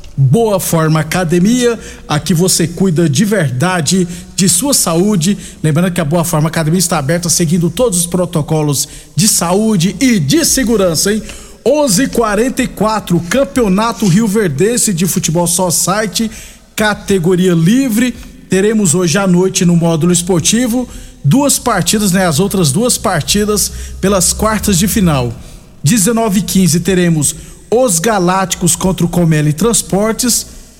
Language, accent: Portuguese, Brazilian